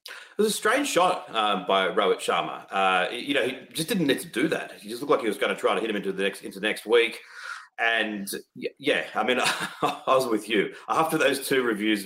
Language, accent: English, Australian